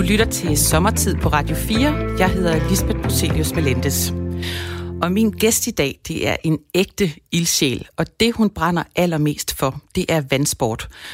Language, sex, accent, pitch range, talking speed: Danish, female, native, 135-175 Hz, 165 wpm